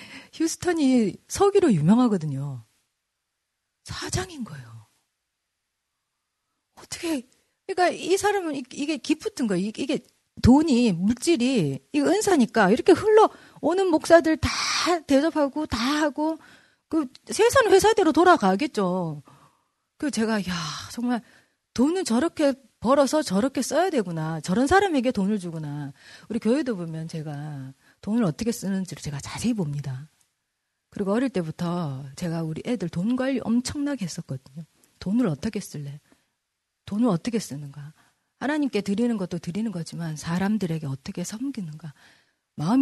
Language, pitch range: Korean, 175-285 Hz